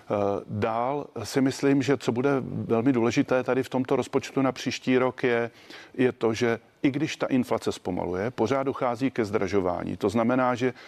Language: Czech